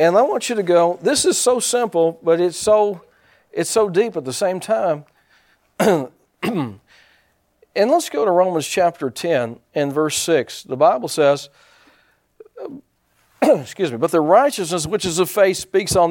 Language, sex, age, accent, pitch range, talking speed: English, male, 50-69, American, 160-215 Hz, 165 wpm